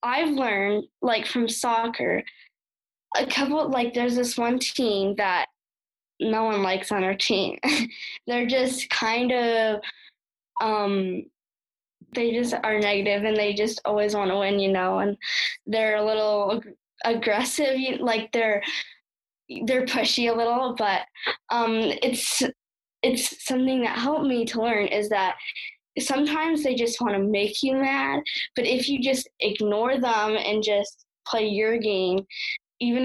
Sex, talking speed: female, 150 wpm